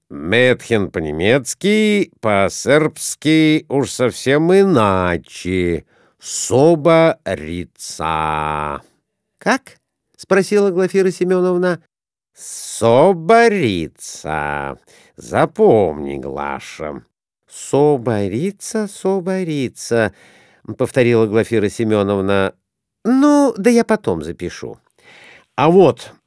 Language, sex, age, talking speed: Russian, male, 50-69, 65 wpm